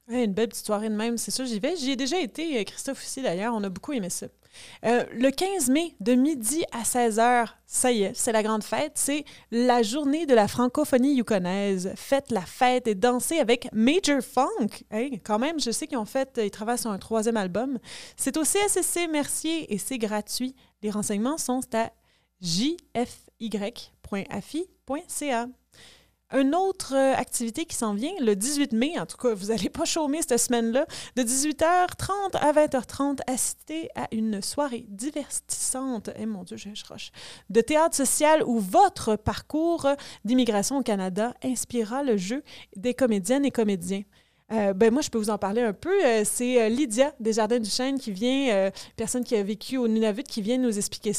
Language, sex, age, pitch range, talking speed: French, female, 30-49, 220-275 Hz, 185 wpm